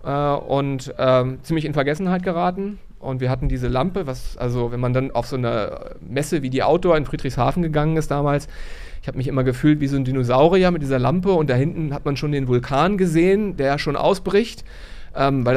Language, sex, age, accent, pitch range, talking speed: German, male, 40-59, German, 130-160 Hz, 210 wpm